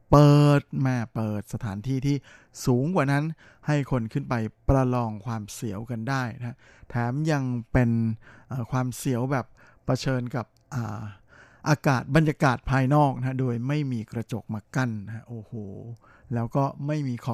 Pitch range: 120-140 Hz